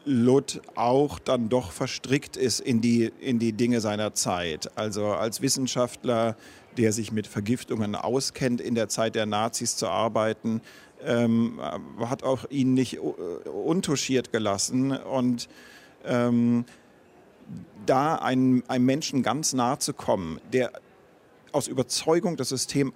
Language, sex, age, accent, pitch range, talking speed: German, male, 40-59, German, 110-130 Hz, 130 wpm